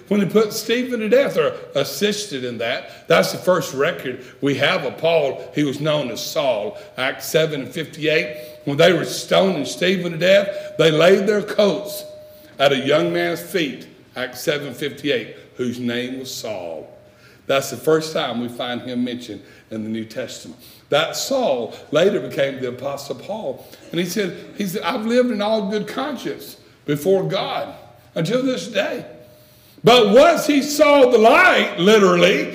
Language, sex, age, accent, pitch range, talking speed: English, male, 60-79, American, 130-205 Hz, 170 wpm